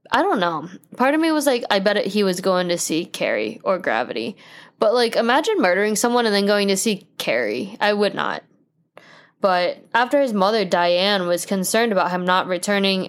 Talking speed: 195 wpm